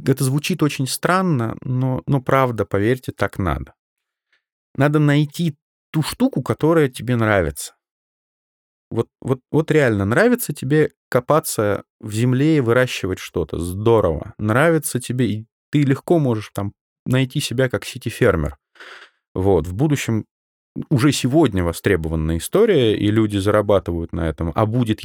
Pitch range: 100-140 Hz